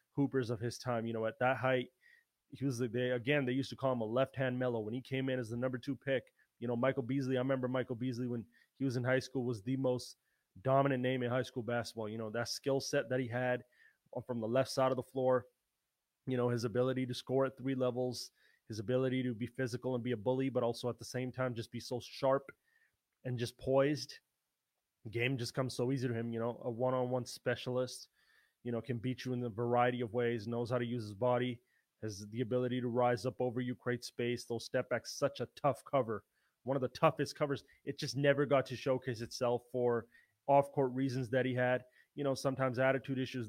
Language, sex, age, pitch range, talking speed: English, male, 20-39, 125-135 Hz, 230 wpm